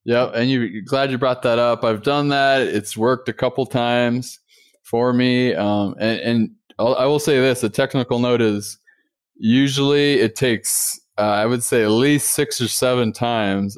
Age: 20-39